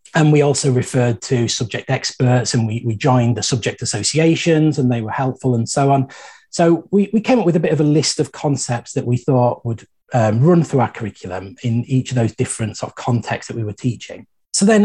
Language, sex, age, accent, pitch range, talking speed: English, male, 30-49, British, 125-155 Hz, 230 wpm